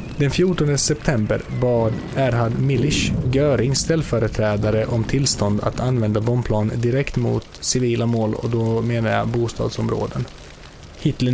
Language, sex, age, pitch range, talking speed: Swedish, male, 20-39, 110-130 Hz, 120 wpm